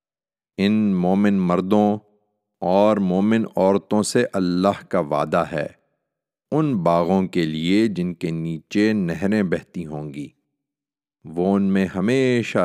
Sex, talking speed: male, 125 wpm